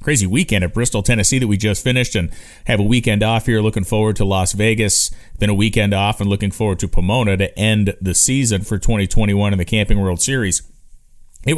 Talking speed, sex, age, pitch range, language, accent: 210 wpm, male, 30-49, 95-115 Hz, English, American